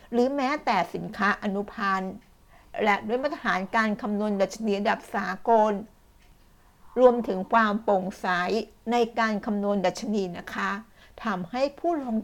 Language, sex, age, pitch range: Thai, female, 60-79, 195-235 Hz